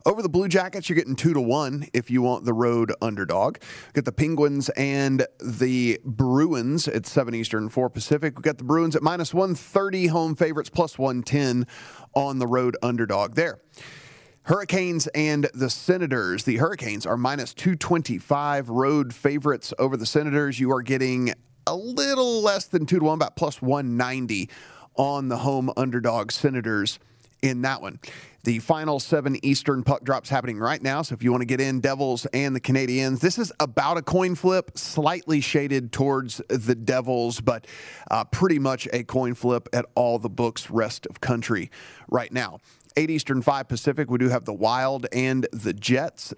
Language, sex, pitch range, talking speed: English, male, 125-150 Hz, 185 wpm